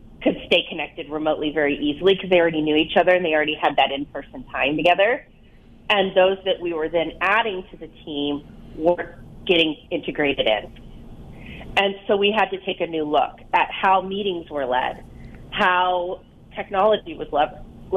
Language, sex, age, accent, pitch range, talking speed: English, female, 30-49, American, 160-190 Hz, 175 wpm